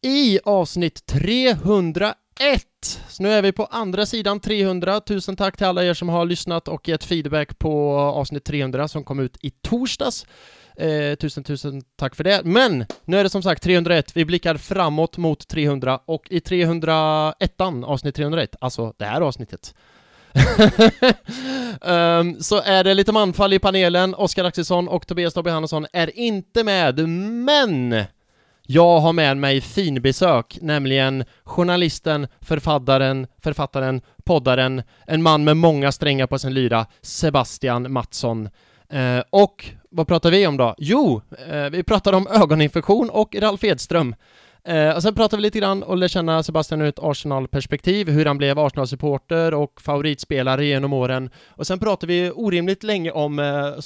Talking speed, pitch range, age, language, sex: 155 wpm, 140-190 Hz, 20-39, English, male